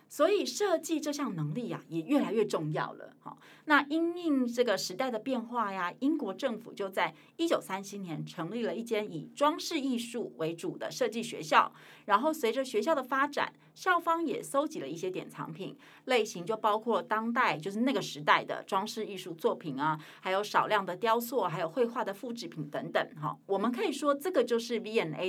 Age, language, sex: 30-49, Chinese, female